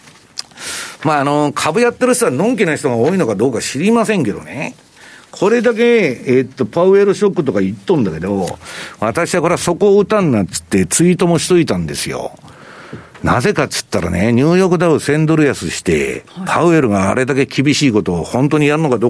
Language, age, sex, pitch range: Japanese, 60-79, male, 125-200 Hz